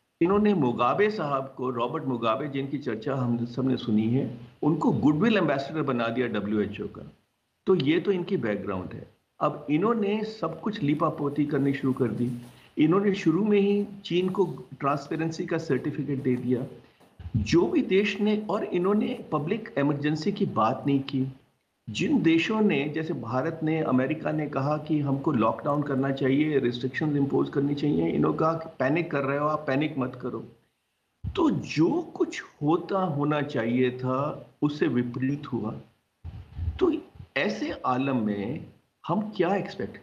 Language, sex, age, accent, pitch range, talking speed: Hindi, male, 50-69, native, 130-175 Hz, 155 wpm